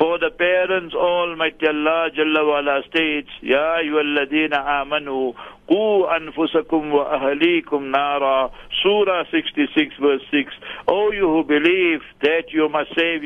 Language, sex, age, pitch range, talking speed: English, male, 60-79, 145-170 Hz, 120 wpm